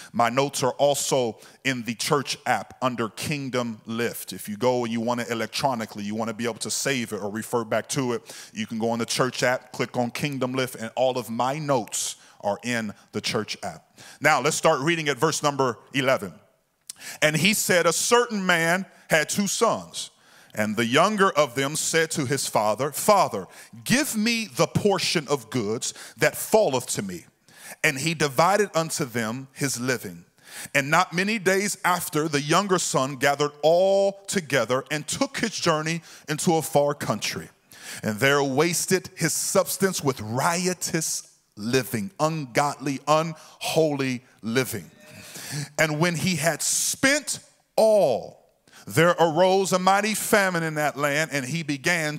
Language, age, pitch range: English, 40-59, 130-175 Hz